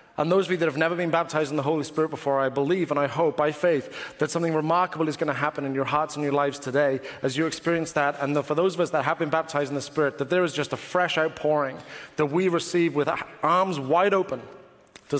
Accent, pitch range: British, 160-200 Hz